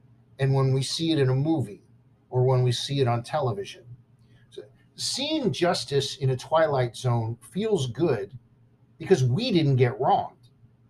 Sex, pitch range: male, 125-175 Hz